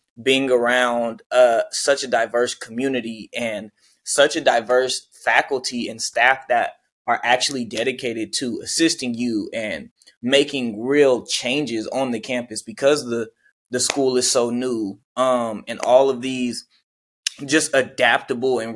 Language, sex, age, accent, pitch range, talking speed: English, male, 20-39, American, 115-135 Hz, 140 wpm